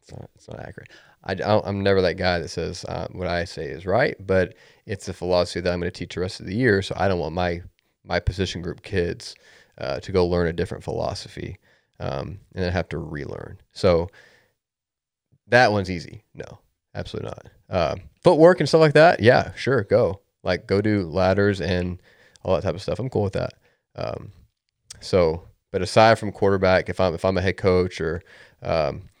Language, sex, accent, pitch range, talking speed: English, male, American, 90-105 Hz, 210 wpm